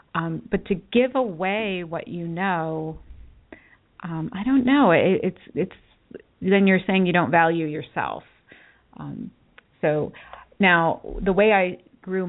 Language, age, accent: English, 30-49, American